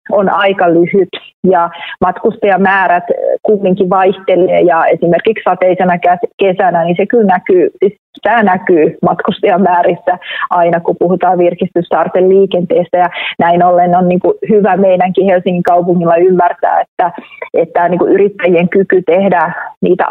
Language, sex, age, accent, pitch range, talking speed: Finnish, female, 30-49, native, 180-215 Hz, 105 wpm